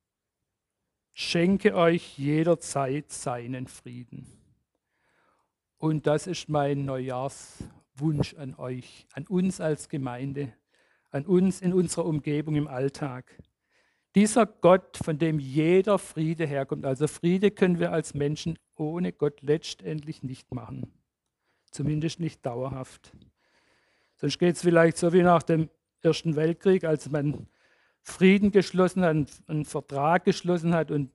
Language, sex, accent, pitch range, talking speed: German, male, German, 140-170 Hz, 125 wpm